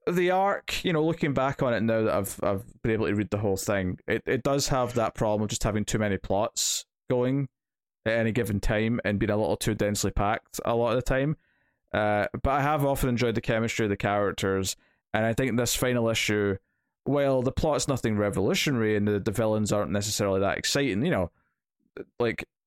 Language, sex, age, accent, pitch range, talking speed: English, male, 20-39, British, 105-130 Hz, 215 wpm